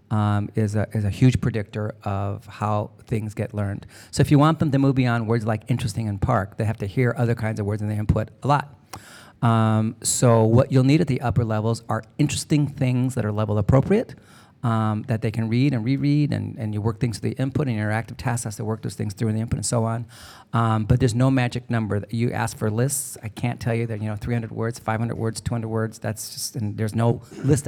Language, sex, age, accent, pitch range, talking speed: English, male, 40-59, American, 110-130 Hz, 240 wpm